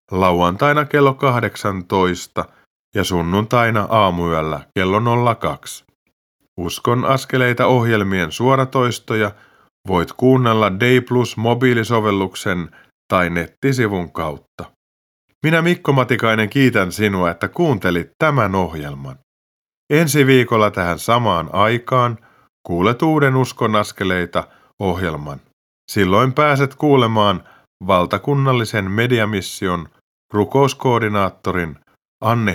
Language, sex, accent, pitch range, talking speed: Finnish, male, native, 90-130 Hz, 85 wpm